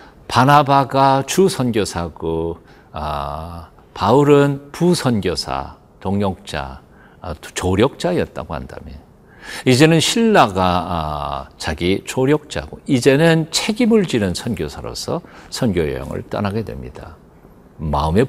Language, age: Korean, 50-69